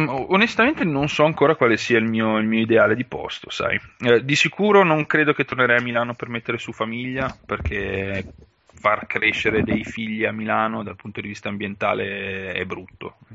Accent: native